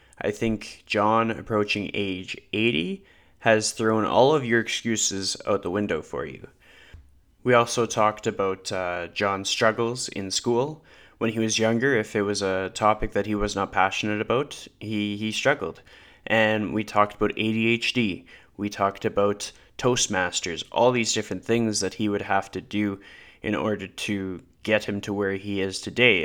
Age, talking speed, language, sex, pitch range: 20-39, 165 wpm, English, male, 100-115 Hz